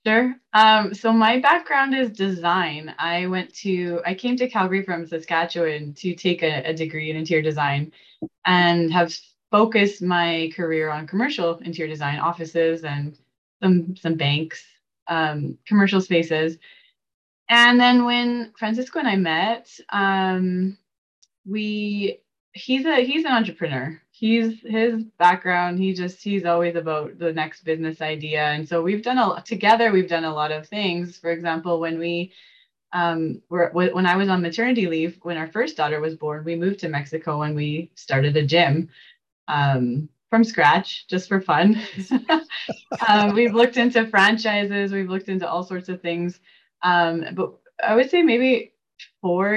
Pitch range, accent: 165-220 Hz, American